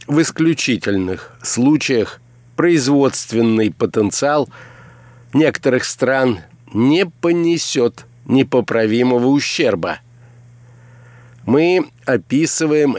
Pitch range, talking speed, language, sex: 115-145 Hz, 60 wpm, Russian, male